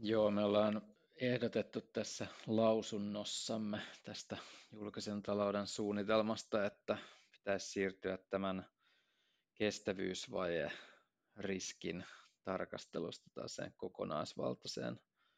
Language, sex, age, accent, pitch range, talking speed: Finnish, male, 20-39, native, 95-105 Hz, 70 wpm